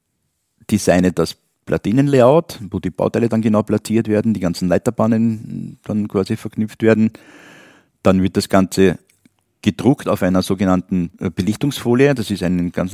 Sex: male